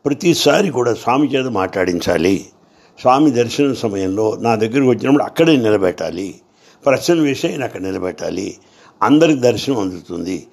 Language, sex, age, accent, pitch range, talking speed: English, male, 60-79, Indian, 100-145 Hz, 120 wpm